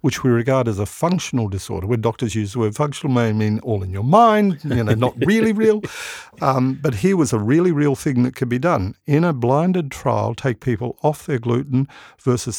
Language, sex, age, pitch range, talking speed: English, male, 50-69, 115-145 Hz, 225 wpm